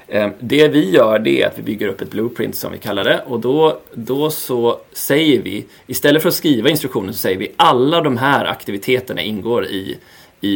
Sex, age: male, 30-49